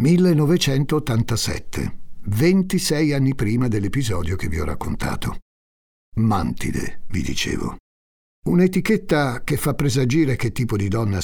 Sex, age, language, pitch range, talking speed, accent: male, 60-79, Italian, 90-135 Hz, 105 wpm, native